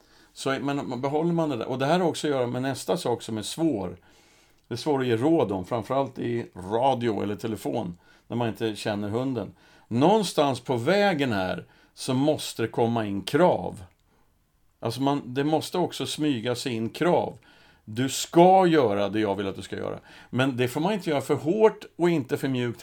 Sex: male